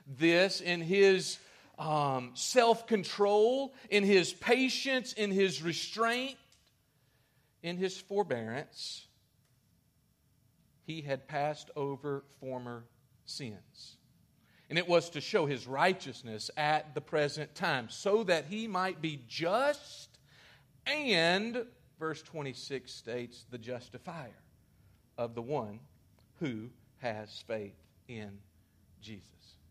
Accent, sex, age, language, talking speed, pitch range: American, male, 50-69, English, 105 wpm, 120-190 Hz